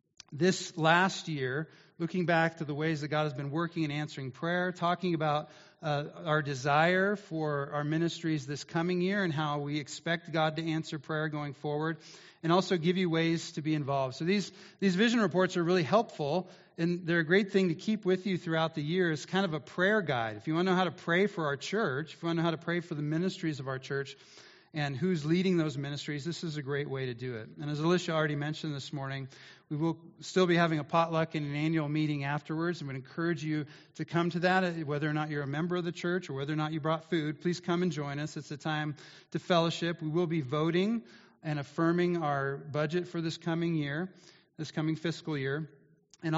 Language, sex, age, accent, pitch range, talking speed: English, male, 40-59, American, 150-175 Hz, 230 wpm